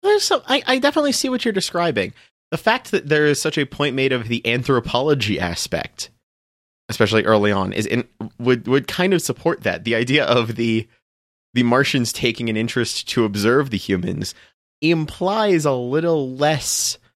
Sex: male